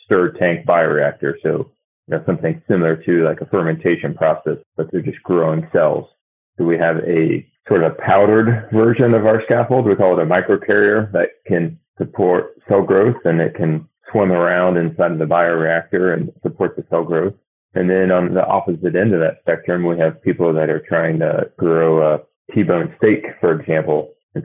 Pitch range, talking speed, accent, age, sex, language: 80-95 Hz, 180 wpm, American, 30-49, male, English